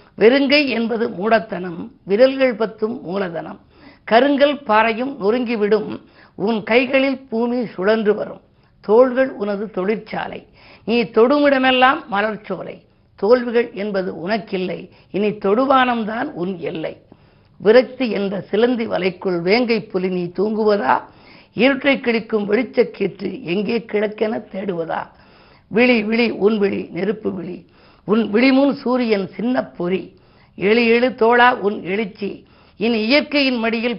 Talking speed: 105 wpm